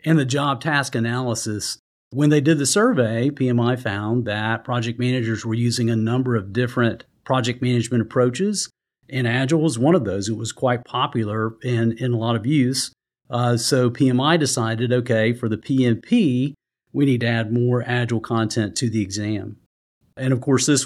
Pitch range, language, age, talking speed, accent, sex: 110-135 Hz, English, 50-69, 180 wpm, American, male